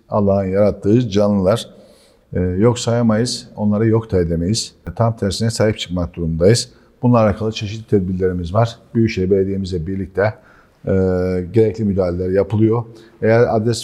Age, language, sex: 50-69, Turkish, male